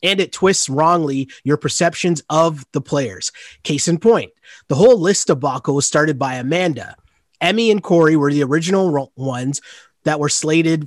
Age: 30-49